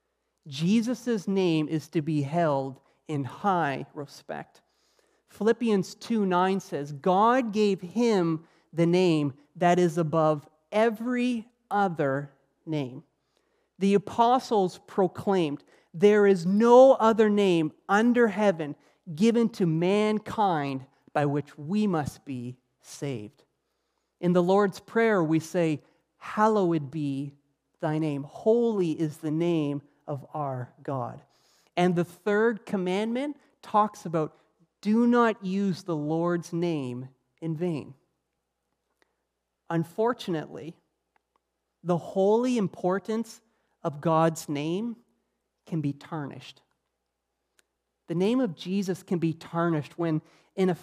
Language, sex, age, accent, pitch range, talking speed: English, male, 30-49, American, 150-210 Hz, 110 wpm